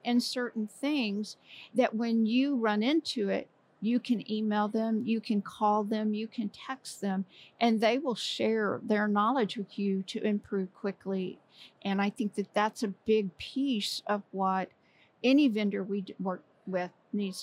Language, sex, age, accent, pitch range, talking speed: English, female, 50-69, American, 190-215 Hz, 165 wpm